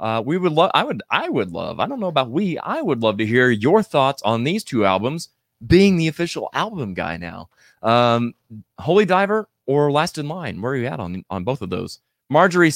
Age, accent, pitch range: 20-39, American, 110-145 Hz